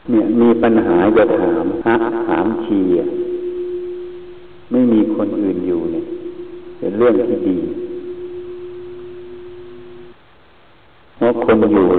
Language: Thai